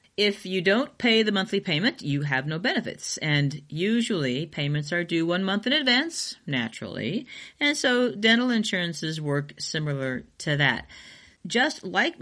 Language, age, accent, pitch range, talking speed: English, 40-59, American, 145-205 Hz, 150 wpm